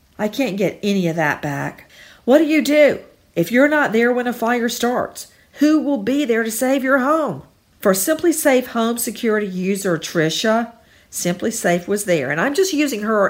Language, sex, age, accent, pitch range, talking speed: English, female, 50-69, American, 180-260 Hz, 195 wpm